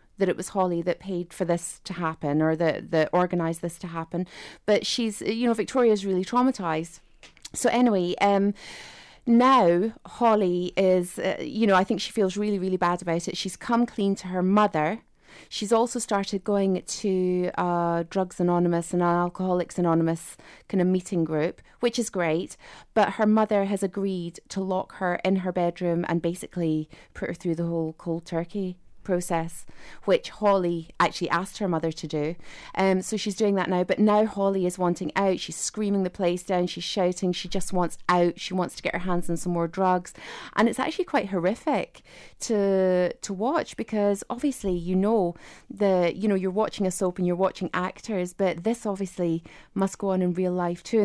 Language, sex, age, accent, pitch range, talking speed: English, female, 30-49, British, 175-205 Hz, 190 wpm